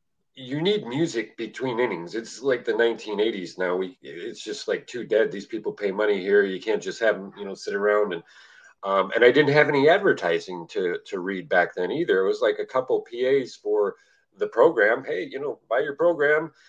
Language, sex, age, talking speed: English, male, 40-59, 210 wpm